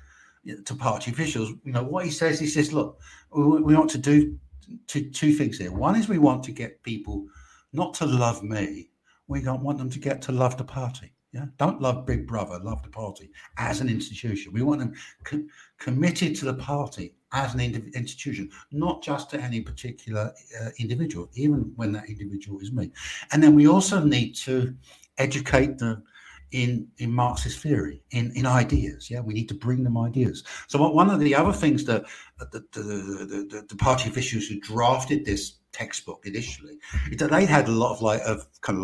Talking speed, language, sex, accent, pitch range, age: 190 wpm, English, male, British, 105-145 Hz, 60-79